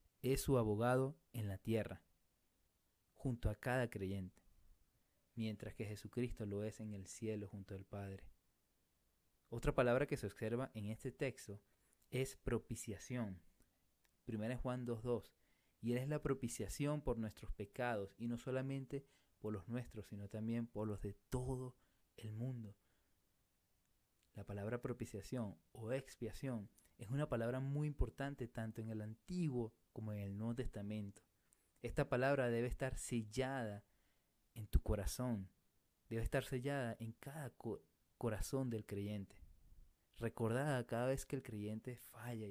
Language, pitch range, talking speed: Spanish, 100-125 Hz, 140 wpm